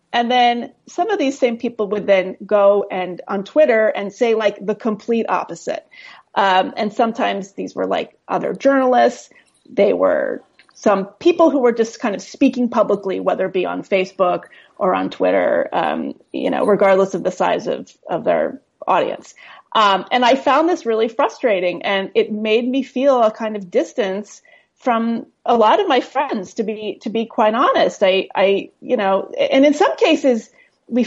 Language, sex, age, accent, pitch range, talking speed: English, female, 30-49, American, 210-290 Hz, 180 wpm